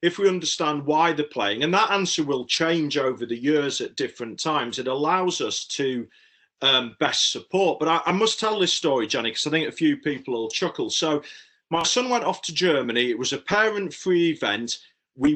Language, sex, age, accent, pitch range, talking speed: English, male, 40-59, British, 135-180 Hz, 210 wpm